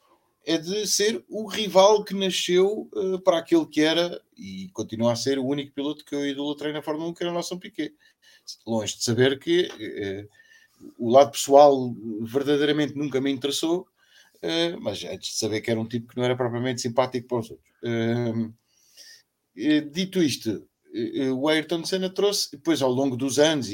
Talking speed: 170 wpm